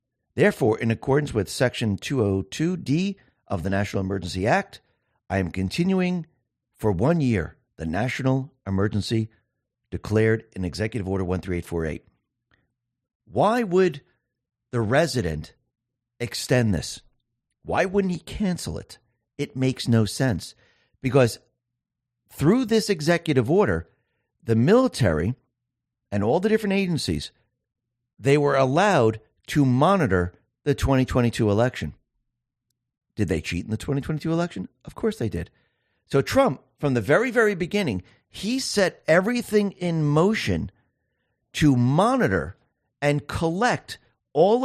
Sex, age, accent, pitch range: male, 50-69, American, 110-170 Hz